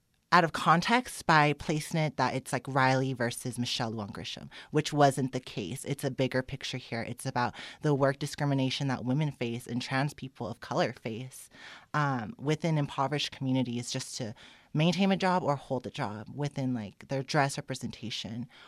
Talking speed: 175 wpm